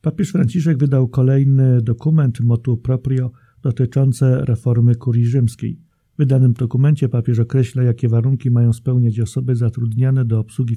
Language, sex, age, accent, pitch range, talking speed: Polish, male, 40-59, native, 115-135 Hz, 135 wpm